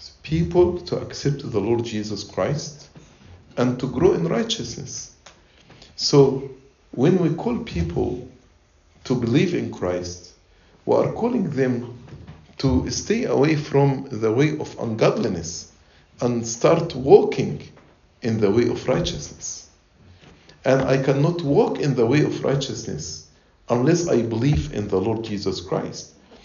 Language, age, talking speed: English, 50-69, 130 wpm